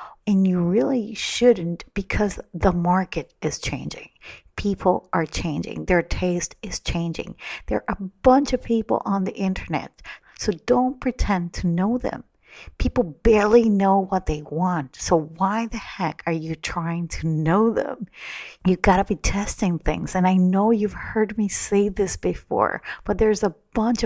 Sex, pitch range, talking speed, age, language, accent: female, 165-205 Hz, 165 wpm, 40-59, English, American